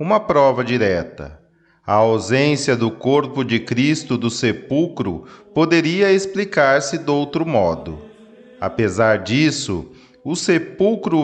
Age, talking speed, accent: 40-59, 105 wpm, Brazilian